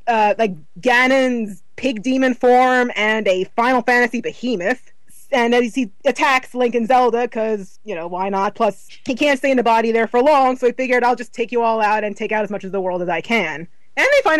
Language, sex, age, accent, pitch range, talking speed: English, female, 20-39, American, 205-250 Hz, 235 wpm